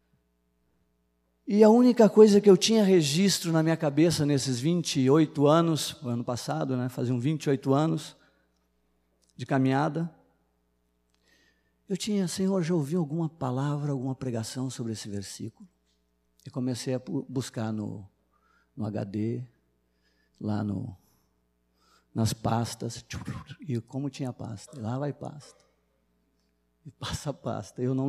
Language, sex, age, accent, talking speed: Portuguese, male, 50-69, Brazilian, 130 wpm